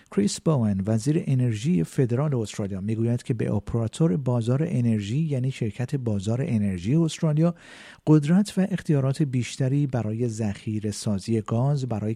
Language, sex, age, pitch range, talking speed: Persian, male, 50-69, 105-145 Hz, 130 wpm